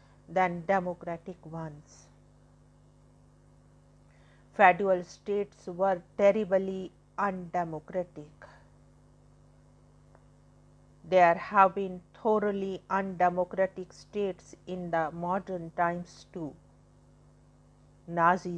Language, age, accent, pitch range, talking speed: English, 50-69, Indian, 160-190 Hz, 65 wpm